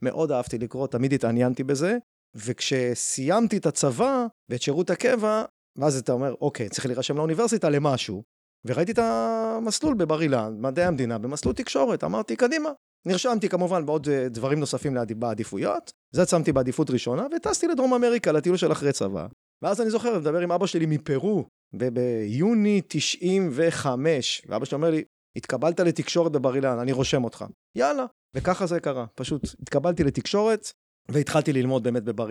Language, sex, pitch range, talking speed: Hebrew, male, 125-175 Hz, 140 wpm